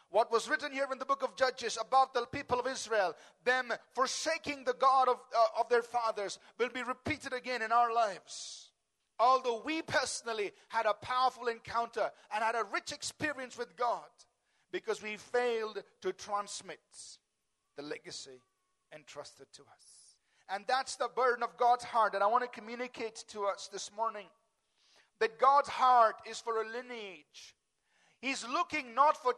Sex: male